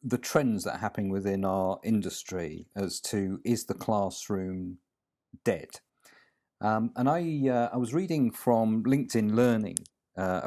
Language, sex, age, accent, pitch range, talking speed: English, male, 50-69, British, 95-120 Hz, 145 wpm